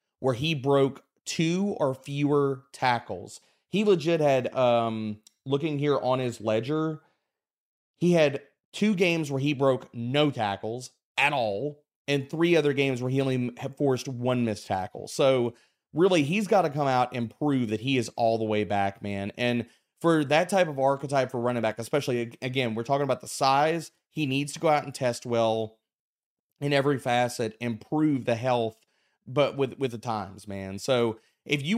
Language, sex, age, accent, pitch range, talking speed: English, male, 30-49, American, 120-145 Hz, 180 wpm